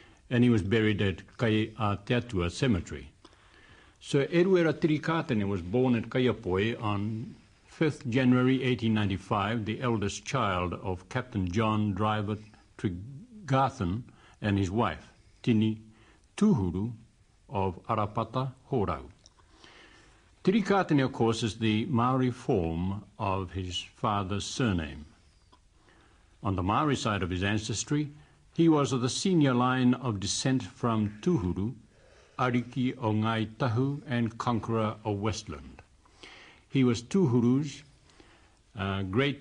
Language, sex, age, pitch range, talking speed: English, male, 60-79, 100-130 Hz, 110 wpm